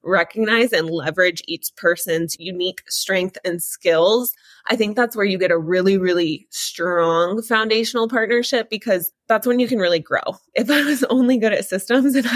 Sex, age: female, 20-39